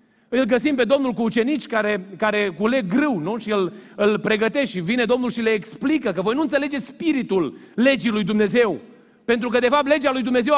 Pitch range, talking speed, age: 220-275 Hz, 210 wpm, 40-59